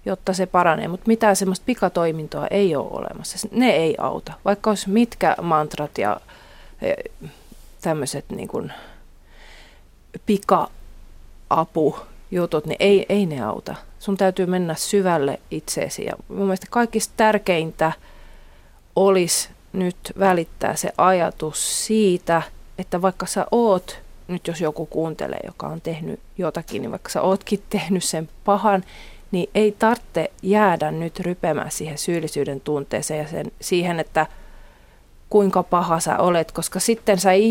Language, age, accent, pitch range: Finnish, 30-49, native, 160-200 Hz